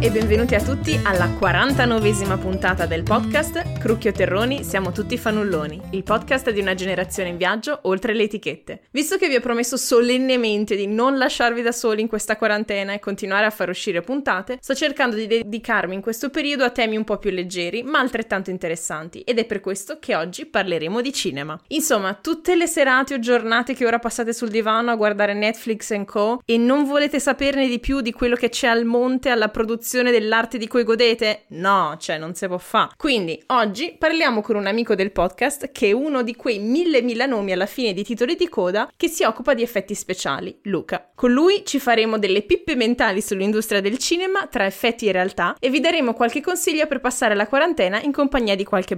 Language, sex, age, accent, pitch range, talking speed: Italian, female, 20-39, native, 205-265 Hz, 200 wpm